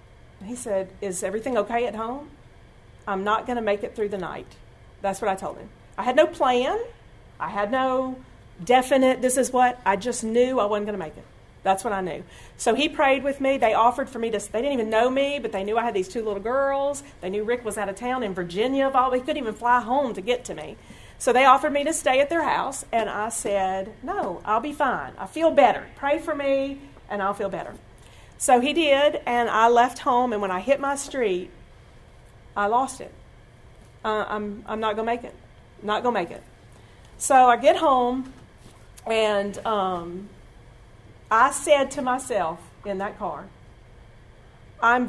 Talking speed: 210 wpm